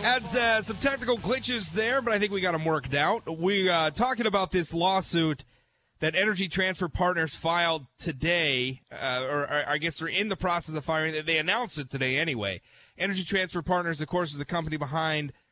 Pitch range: 135-180 Hz